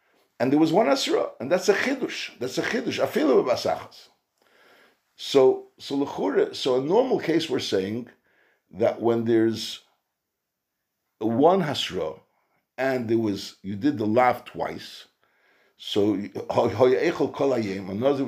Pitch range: 110-165 Hz